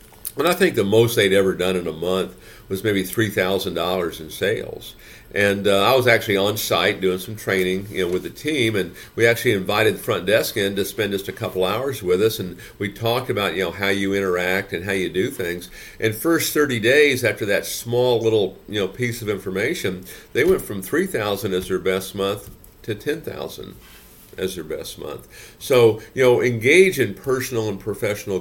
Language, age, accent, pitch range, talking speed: English, 50-69, American, 95-120 Hz, 210 wpm